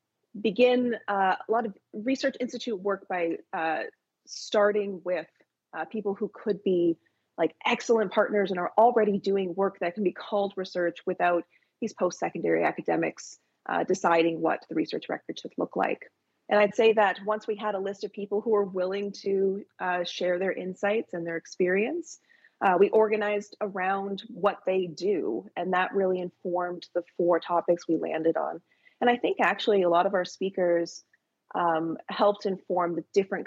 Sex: female